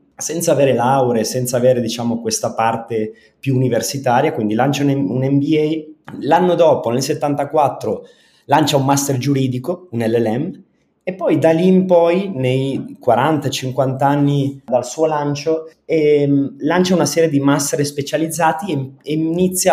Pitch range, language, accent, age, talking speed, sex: 125-165 Hz, Italian, native, 30-49, 145 wpm, male